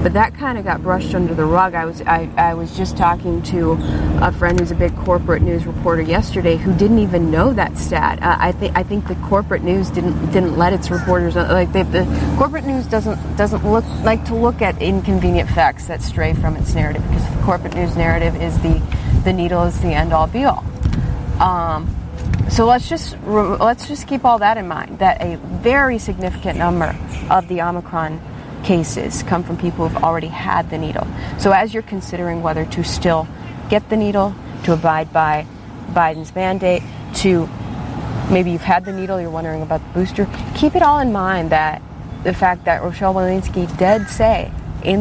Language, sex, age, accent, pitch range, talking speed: English, female, 30-49, American, 130-195 Hz, 195 wpm